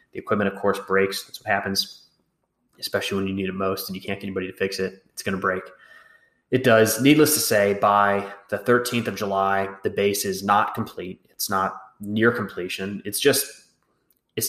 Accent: American